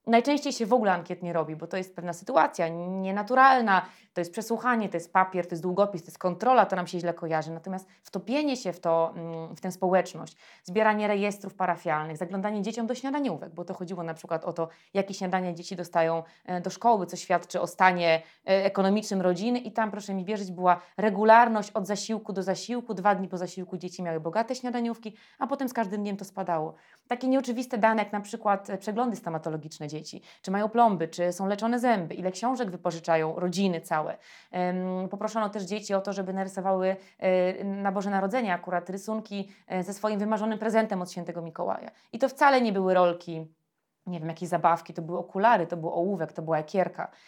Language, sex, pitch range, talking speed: Polish, female, 175-215 Hz, 185 wpm